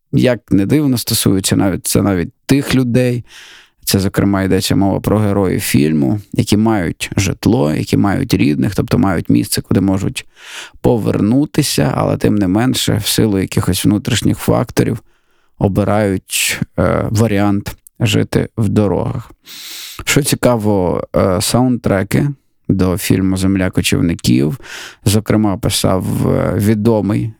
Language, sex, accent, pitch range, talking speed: Ukrainian, male, native, 95-115 Hz, 120 wpm